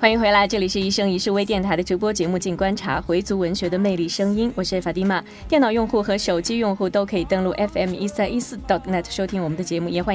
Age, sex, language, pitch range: 20-39, female, Chinese, 180-225 Hz